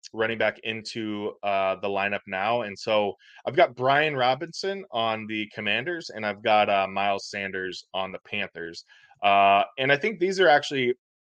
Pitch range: 95-120 Hz